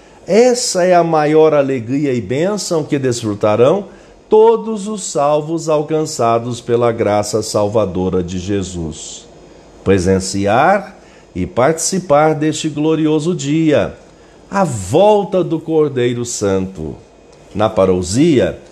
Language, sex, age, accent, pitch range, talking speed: Portuguese, male, 50-69, Brazilian, 110-175 Hz, 100 wpm